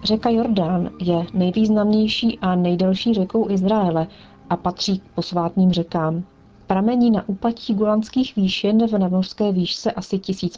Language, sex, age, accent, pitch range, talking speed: Czech, female, 40-59, native, 180-215 Hz, 130 wpm